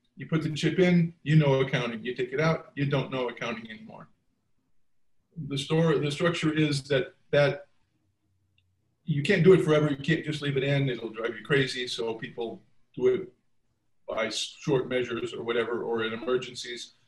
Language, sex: English, male